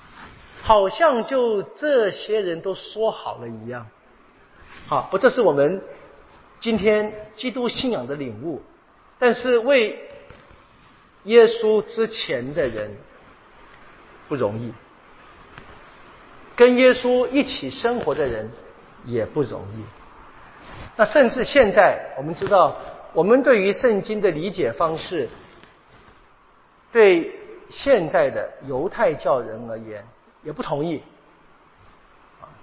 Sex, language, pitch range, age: male, Chinese, 185-280 Hz, 50-69